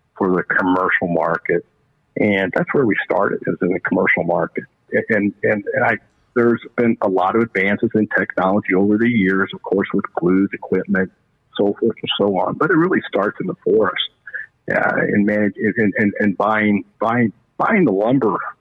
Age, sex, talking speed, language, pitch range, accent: 50-69, male, 185 wpm, English, 105-115 Hz, American